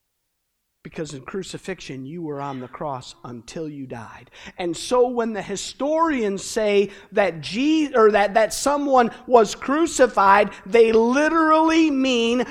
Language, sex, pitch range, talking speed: English, male, 180-250 Hz, 135 wpm